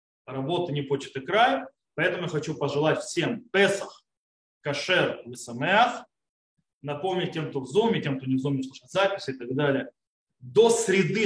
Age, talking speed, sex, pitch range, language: 20-39, 160 wpm, male, 140-210 Hz, Russian